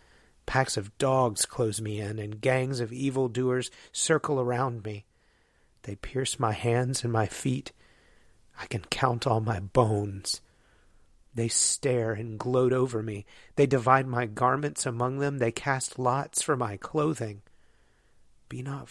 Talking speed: 150 wpm